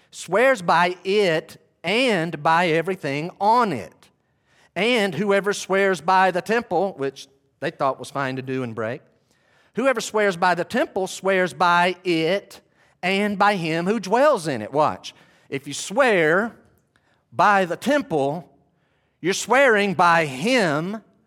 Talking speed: 140 wpm